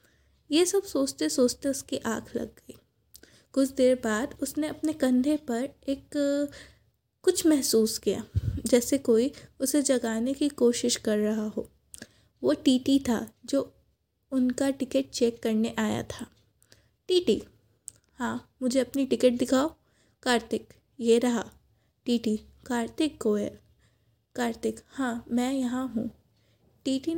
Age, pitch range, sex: 20-39, 235-285 Hz, female